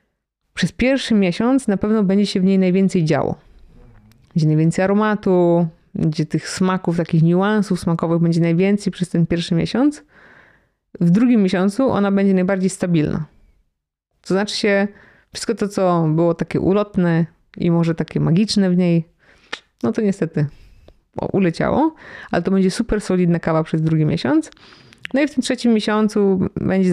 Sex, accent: female, native